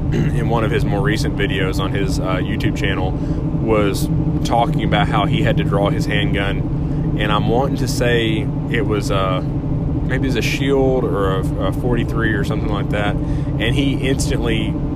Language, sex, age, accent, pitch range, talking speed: English, male, 30-49, American, 145-155 Hz, 185 wpm